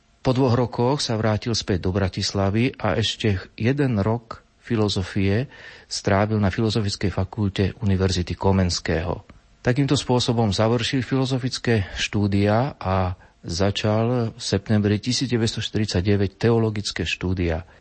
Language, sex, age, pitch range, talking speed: Slovak, male, 40-59, 100-120 Hz, 105 wpm